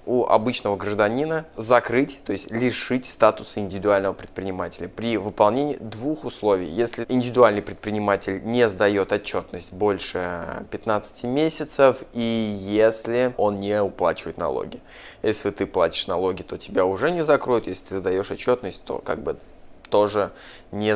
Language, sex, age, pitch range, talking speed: Russian, male, 20-39, 105-125 Hz, 135 wpm